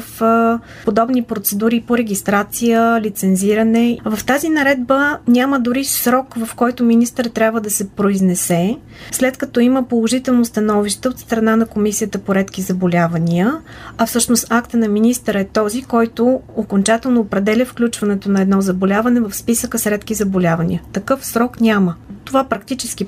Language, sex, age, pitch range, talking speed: Bulgarian, female, 20-39, 200-245 Hz, 145 wpm